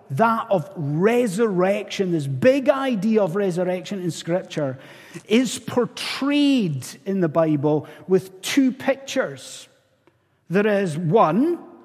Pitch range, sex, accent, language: 165-245 Hz, male, British, English